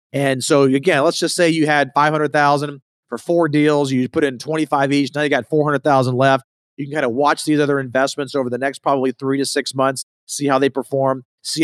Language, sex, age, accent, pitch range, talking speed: English, male, 40-59, American, 130-155 Hz, 225 wpm